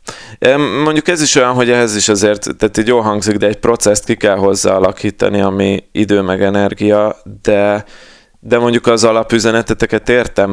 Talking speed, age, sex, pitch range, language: 165 wpm, 20-39, male, 100-110 Hz, Hungarian